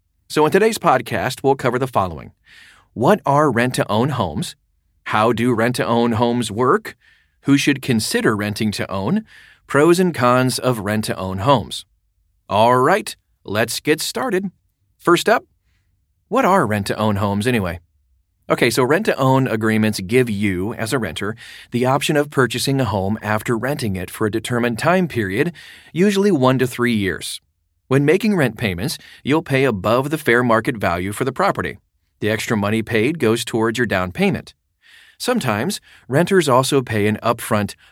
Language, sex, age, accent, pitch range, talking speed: English, male, 40-59, American, 105-140 Hz, 155 wpm